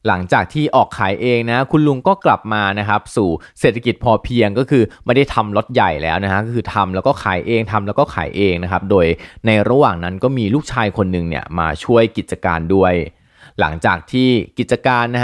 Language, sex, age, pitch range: Thai, male, 20-39, 95-125 Hz